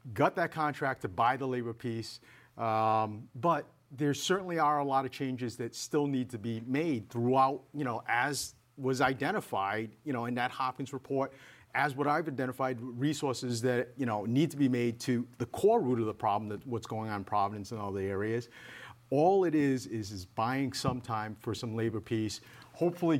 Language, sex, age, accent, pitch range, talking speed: English, male, 50-69, American, 120-150 Hz, 200 wpm